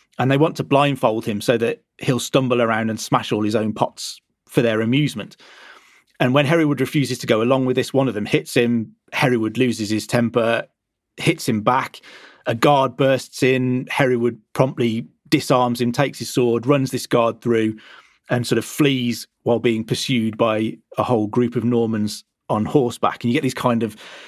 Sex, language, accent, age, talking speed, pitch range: male, English, British, 30-49, 190 wpm, 120-145 Hz